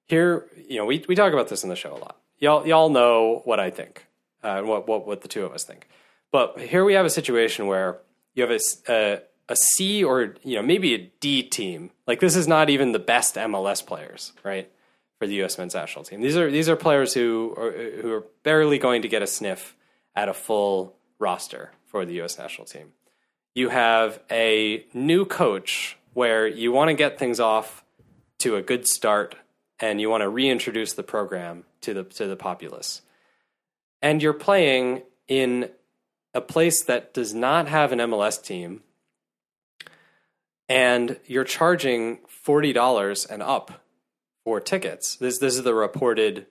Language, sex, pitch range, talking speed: English, male, 110-150 Hz, 185 wpm